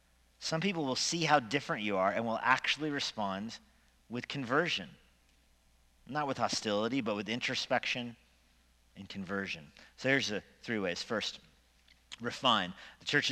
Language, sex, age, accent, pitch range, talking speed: English, male, 40-59, American, 100-140 Hz, 140 wpm